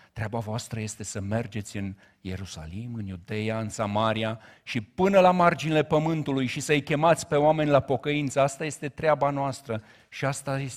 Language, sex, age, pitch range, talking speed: Romanian, male, 50-69, 105-135 Hz, 160 wpm